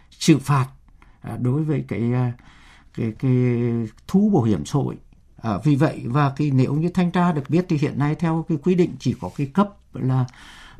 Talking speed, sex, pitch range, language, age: 195 wpm, male, 120-155 Hz, Vietnamese, 60-79